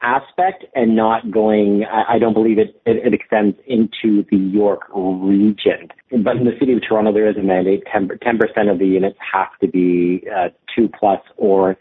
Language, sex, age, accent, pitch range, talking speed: English, male, 40-59, American, 100-120 Hz, 185 wpm